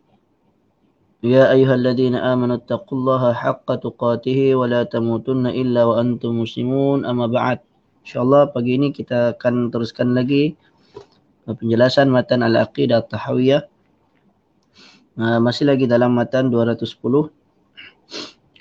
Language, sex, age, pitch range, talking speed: Malay, male, 20-39, 120-145 Hz, 105 wpm